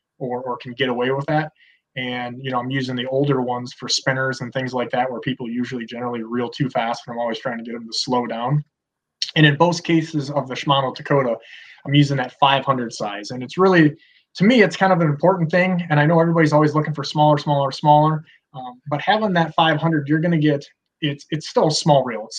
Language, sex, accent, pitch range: English, male, American, 125-150 Hz